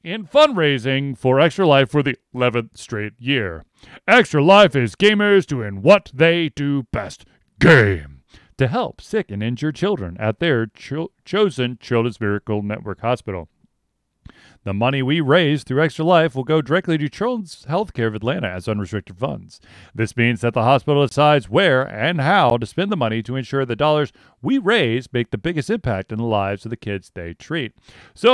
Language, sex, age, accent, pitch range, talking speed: English, male, 40-59, American, 110-160 Hz, 175 wpm